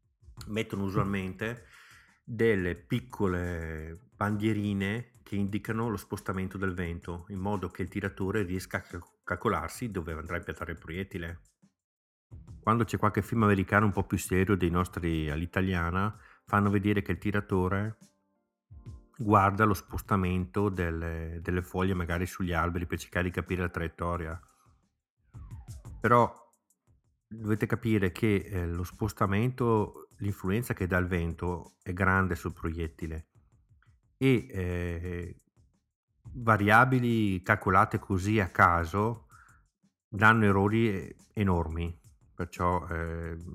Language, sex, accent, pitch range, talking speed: Italian, male, native, 85-105 Hz, 115 wpm